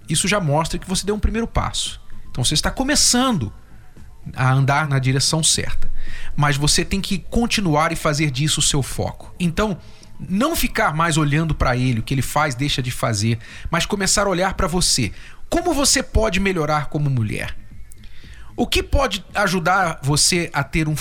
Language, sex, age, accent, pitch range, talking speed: Portuguese, male, 40-59, Brazilian, 135-205 Hz, 180 wpm